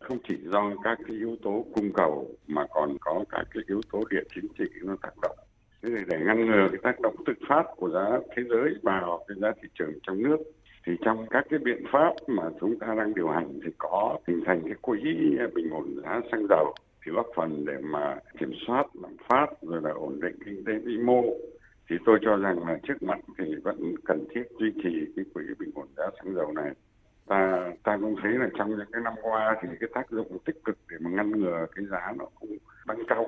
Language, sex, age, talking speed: Vietnamese, male, 60-79, 225 wpm